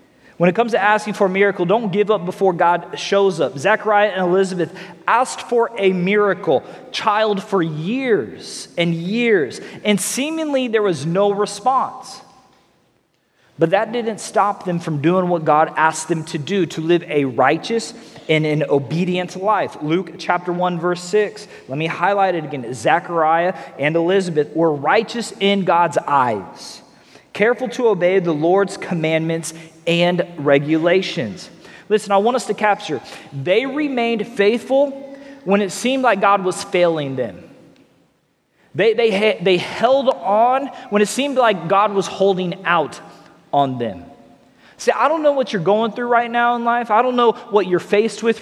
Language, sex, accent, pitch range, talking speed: English, male, American, 175-225 Hz, 160 wpm